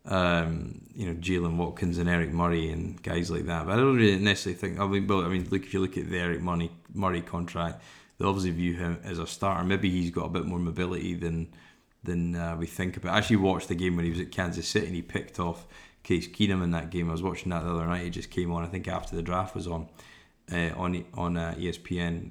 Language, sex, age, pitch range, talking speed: English, male, 20-39, 85-95 Hz, 260 wpm